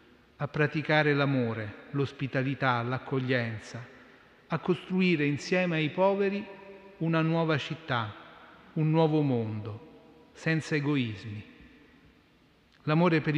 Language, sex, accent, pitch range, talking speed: Italian, male, native, 130-160 Hz, 90 wpm